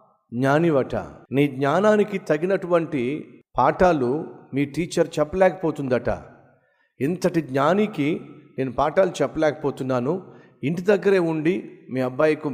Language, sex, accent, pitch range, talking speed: Telugu, male, native, 125-170 Hz, 85 wpm